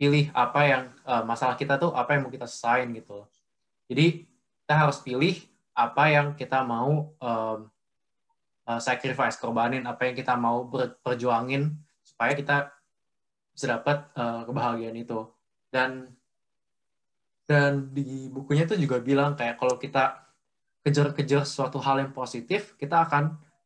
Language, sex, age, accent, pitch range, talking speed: Indonesian, male, 20-39, native, 120-145 Hz, 135 wpm